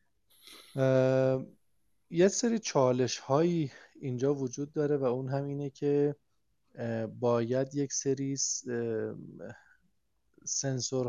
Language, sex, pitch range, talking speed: Persian, male, 120-145 Hz, 80 wpm